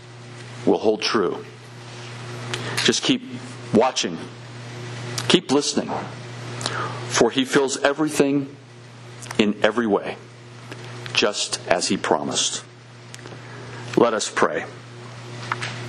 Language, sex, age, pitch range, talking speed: English, male, 50-69, 115-125 Hz, 85 wpm